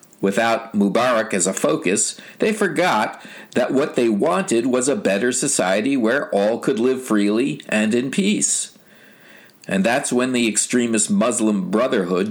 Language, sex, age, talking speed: English, male, 50-69, 145 wpm